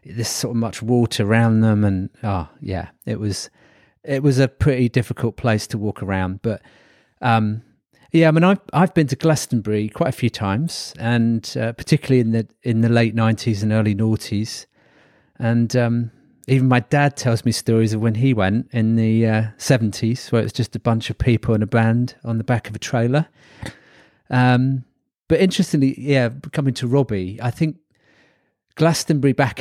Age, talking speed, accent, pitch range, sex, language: 40-59, 185 wpm, British, 110-130 Hz, male, English